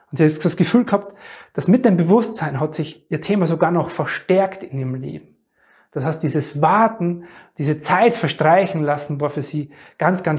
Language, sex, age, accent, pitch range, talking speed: German, male, 30-49, German, 155-200 Hz, 190 wpm